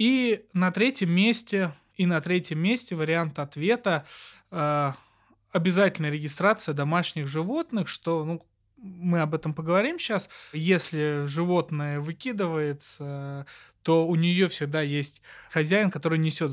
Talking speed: 115 wpm